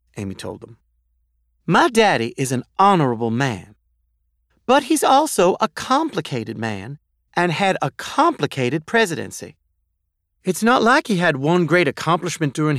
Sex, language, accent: male, English, American